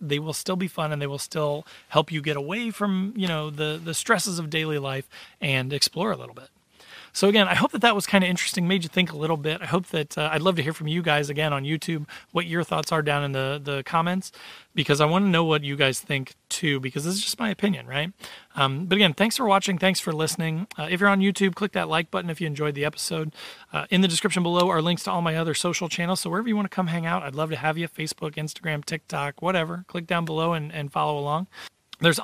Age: 30-49